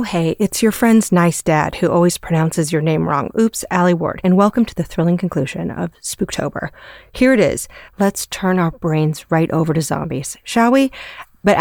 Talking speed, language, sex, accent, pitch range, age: 195 wpm, English, female, American, 160-195 Hz, 30-49